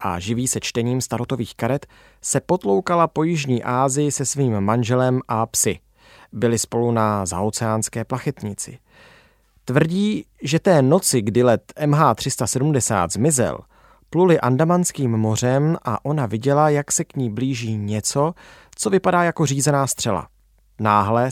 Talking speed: 130 wpm